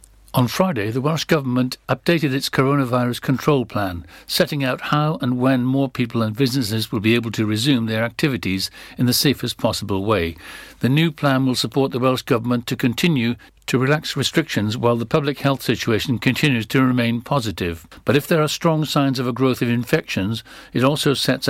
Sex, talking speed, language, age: male, 185 wpm, English, 60-79